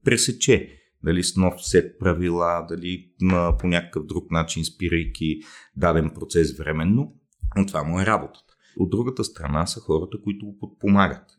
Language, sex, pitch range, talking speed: Bulgarian, male, 80-100 Hz, 150 wpm